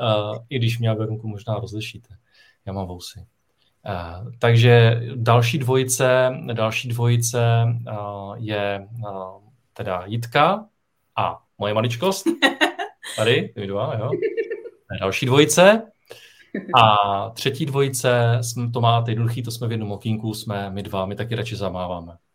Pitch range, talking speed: 105-125 Hz, 130 wpm